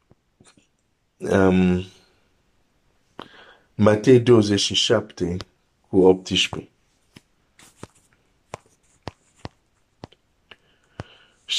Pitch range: 100-125 Hz